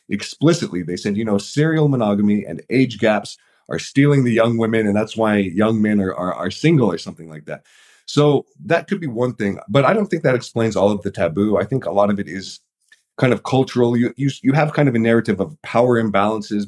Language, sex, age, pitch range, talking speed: English, male, 30-49, 100-130 Hz, 235 wpm